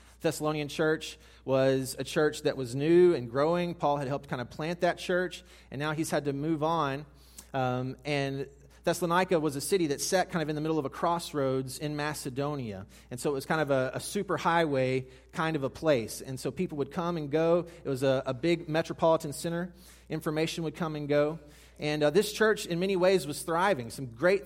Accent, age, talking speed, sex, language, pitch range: American, 30-49, 215 wpm, male, English, 135-170 Hz